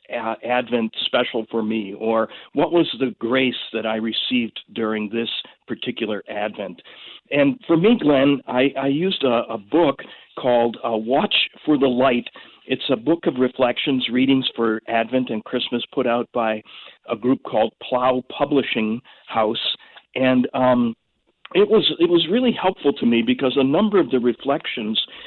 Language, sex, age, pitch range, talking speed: English, male, 50-69, 115-135 Hz, 165 wpm